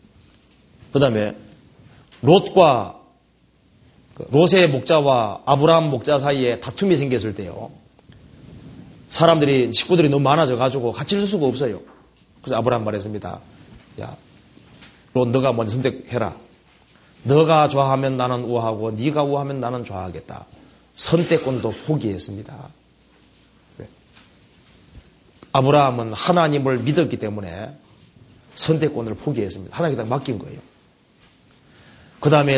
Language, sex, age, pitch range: Korean, male, 30-49, 120-160 Hz